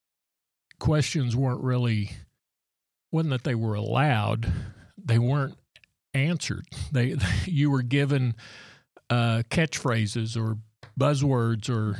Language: English